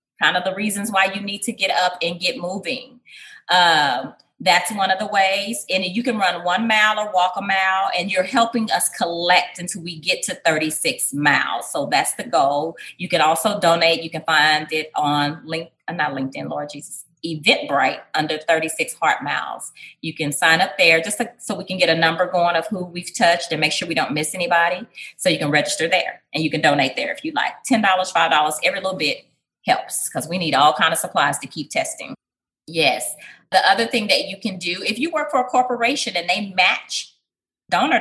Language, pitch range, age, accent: English, 165-230 Hz, 30-49, American